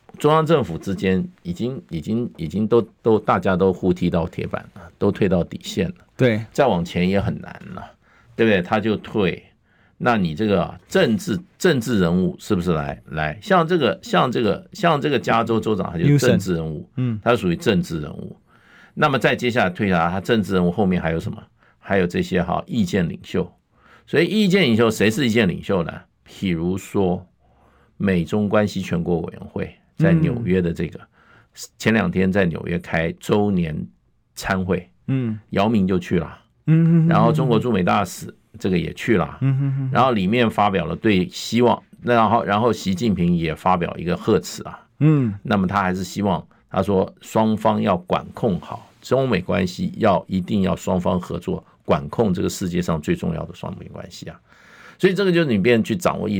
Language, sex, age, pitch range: Chinese, male, 50-69, 90-125 Hz